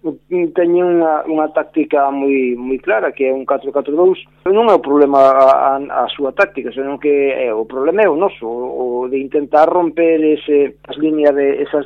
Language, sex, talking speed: Spanish, male, 185 wpm